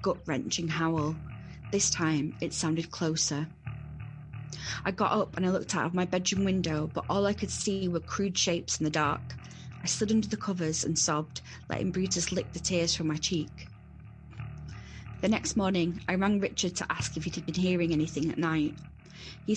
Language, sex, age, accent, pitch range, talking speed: English, female, 20-39, British, 150-180 Hz, 185 wpm